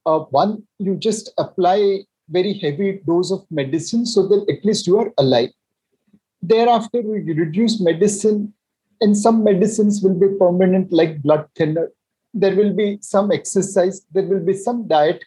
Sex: male